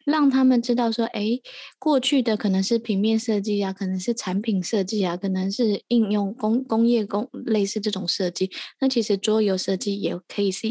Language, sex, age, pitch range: Chinese, female, 20-39, 205-250 Hz